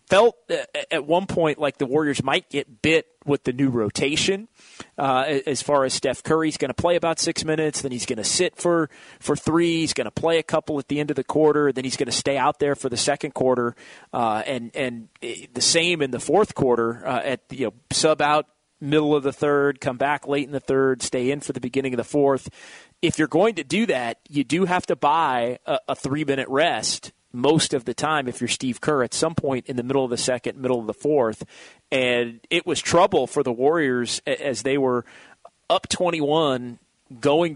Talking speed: 220 wpm